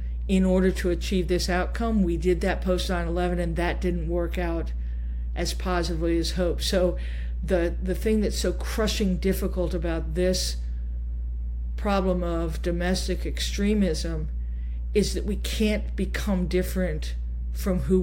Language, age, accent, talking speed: English, 50-69, American, 140 wpm